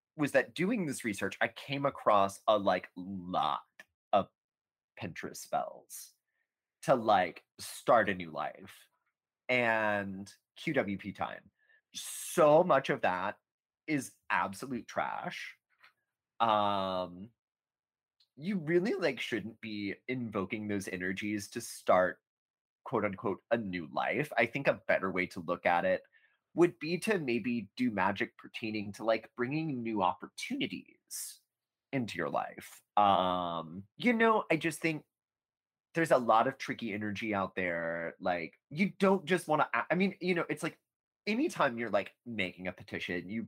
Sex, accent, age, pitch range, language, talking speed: male, American, 30-49, 95-160 Hz, English, 140 wpm